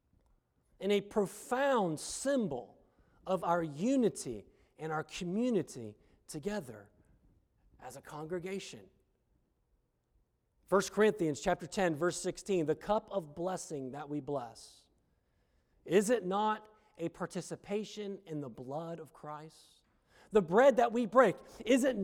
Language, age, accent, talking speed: English, 40-59, American, 120 wpm